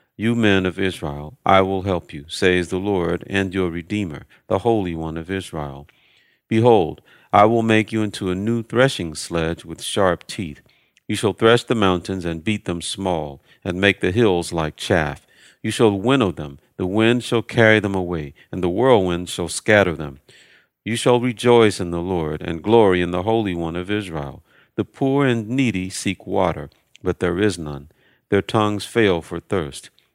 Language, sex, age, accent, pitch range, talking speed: English, male, 50-69, American, 85-110 Hz, 185 wpm